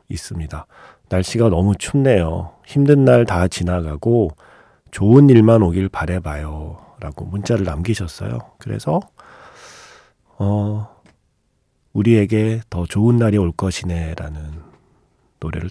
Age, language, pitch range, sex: 40-59, Korean, 85-115 Hz, male